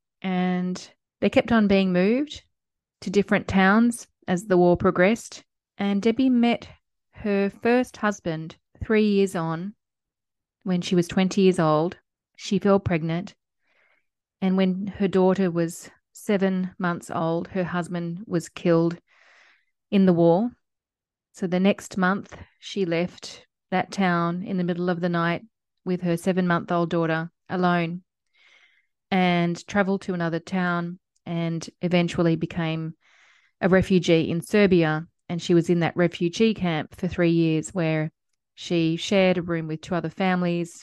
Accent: Australian